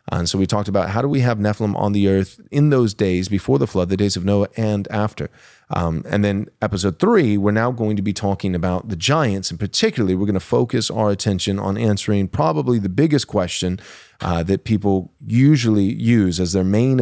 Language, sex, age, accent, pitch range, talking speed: English, male, 30-49, American, 95-115 Hz, 215 wpm